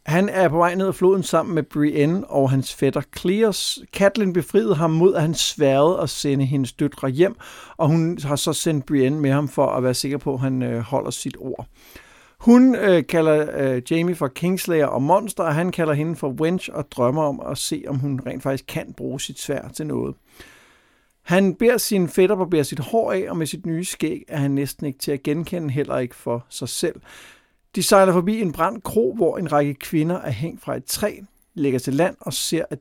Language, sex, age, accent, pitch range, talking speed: Danish, male, 60-79, native, 140-180 Hz, 220 wpm